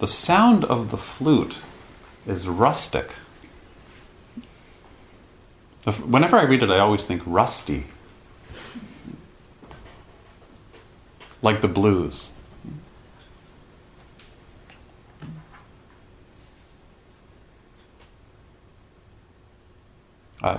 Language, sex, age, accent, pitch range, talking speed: English, male, 40-59, American, 90-115 Hz, 55 wpm